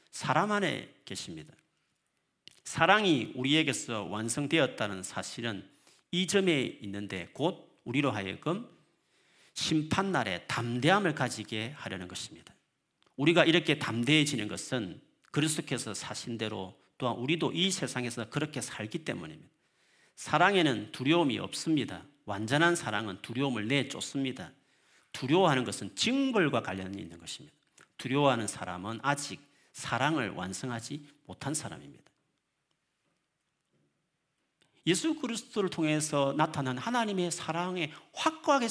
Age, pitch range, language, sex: 40-59, 125-195 Hz, Korean, male